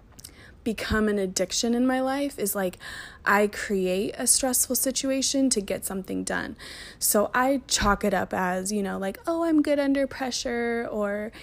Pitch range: 195-240 Hz